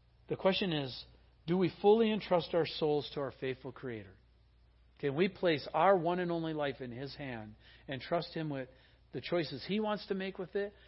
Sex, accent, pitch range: male, American, 150-215 Hz